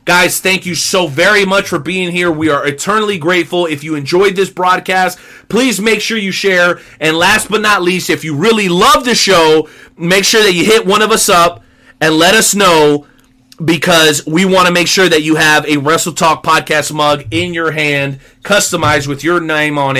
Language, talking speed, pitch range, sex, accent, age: English, 205 wpm, 150-215 Hz, male, American, 30-49